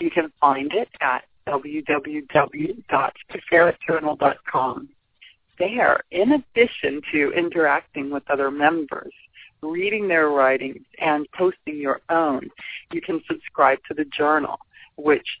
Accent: American